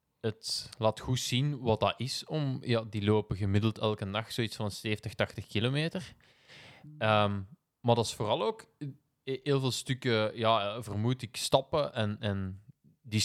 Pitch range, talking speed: 100-120 Hz, 160 wpm